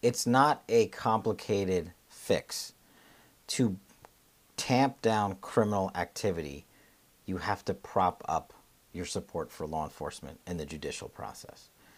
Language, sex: English, male